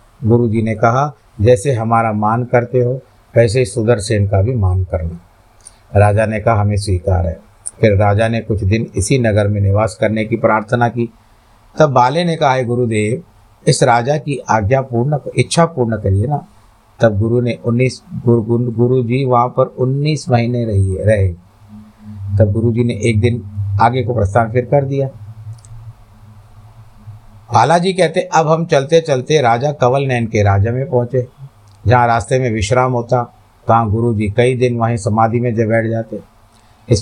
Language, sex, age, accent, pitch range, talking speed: Hindi, male, 50-69, native, 105-125 Hz, 165 wpm